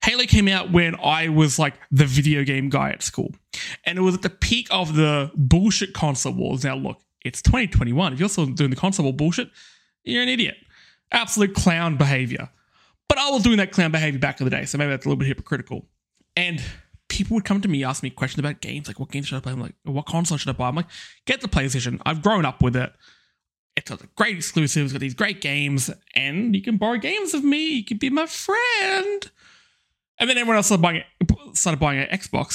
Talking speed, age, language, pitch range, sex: 230 wpm, 20-39, English, 140-205 Hz, male